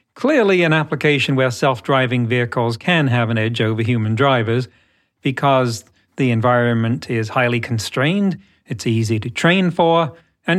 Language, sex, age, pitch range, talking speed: English, male, 40-59, 115-150 Hz, 140 wpm